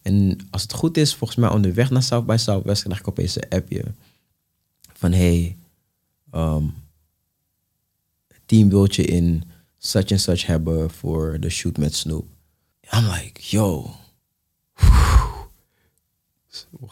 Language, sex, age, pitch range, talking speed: Dutch, male, 20-39, 90-120 Hz, 120 wpm